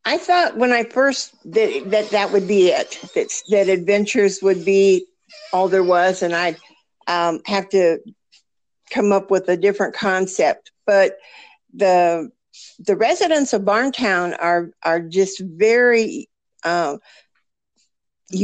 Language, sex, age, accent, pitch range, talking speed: English, female, 50-69, American, 185-235 Hz, 135 wpm